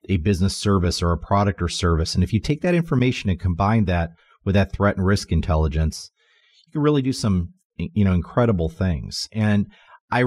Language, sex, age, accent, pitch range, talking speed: English, male, 40-59, American, 90-110 Hz, 200 wpm